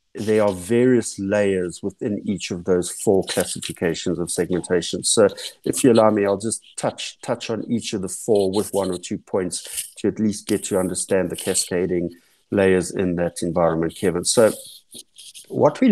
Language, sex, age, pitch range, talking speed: English, male, 50-69, 95-115 Hz, 175 wpm